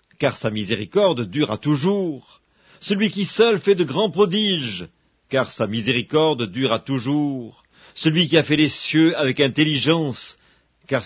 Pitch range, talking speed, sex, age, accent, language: 115-170 Hz, 140 wpm, male, 50-69, French, English